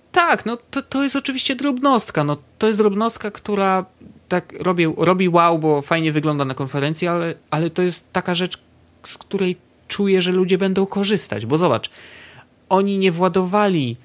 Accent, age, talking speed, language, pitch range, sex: native, 30-49, 165 wpm, Polish, 120-185 Hz, male